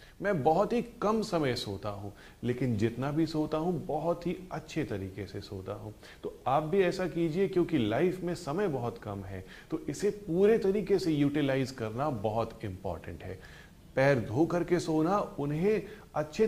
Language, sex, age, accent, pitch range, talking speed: Hindi, male, 30-49, native, 110-170 Hz, 170 wpm